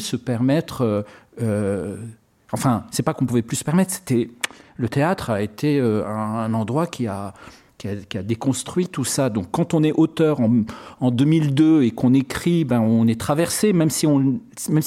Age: 50-69